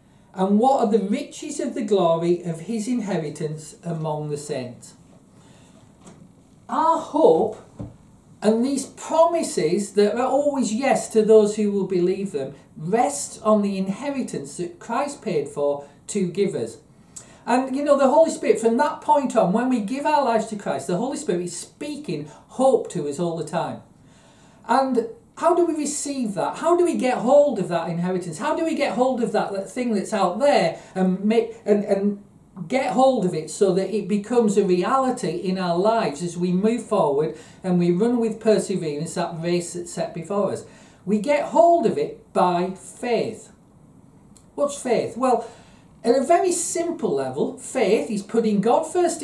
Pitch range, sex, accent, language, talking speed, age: 180-260 Hz, male, British, English, 175 wpm, 40-59